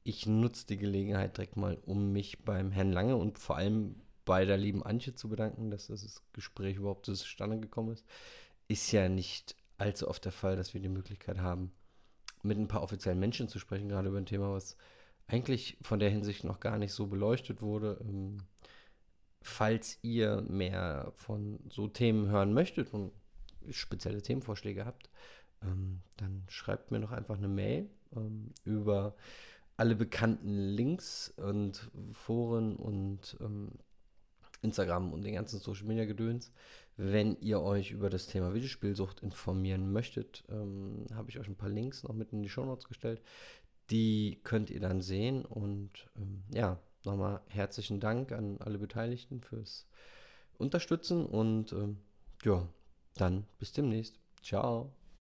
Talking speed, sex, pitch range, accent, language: 150 wpm, male, 100-110 Hz, German, German